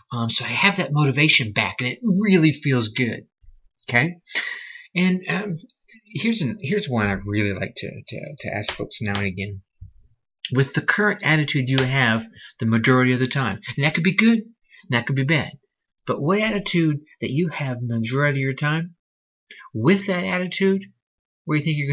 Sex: male